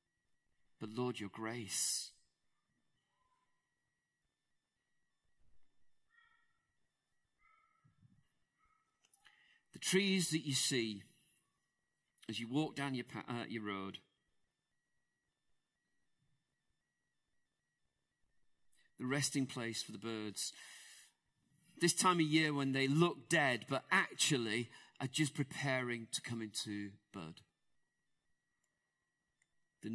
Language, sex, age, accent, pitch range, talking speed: English, male, 40-59, British, 110-155 Hz, 80 wpm